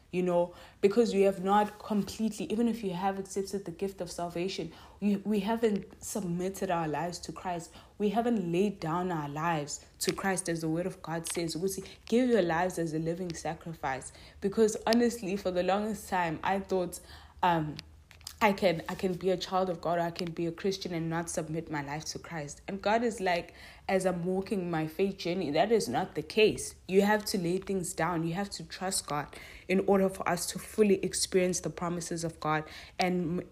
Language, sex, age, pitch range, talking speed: English, female, 20-39, 165-195 Hz, 210 wpm